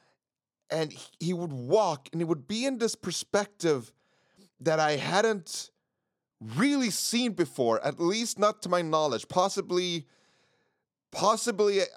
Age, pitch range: 30-49, 145-210 Hz